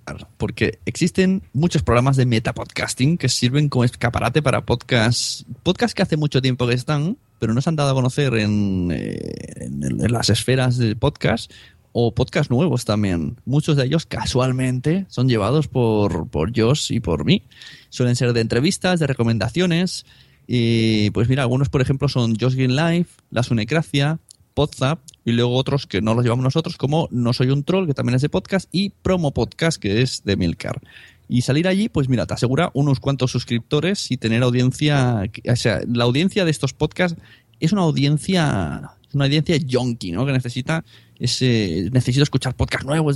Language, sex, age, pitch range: Spanish, male, 20-39, 115-145 Hz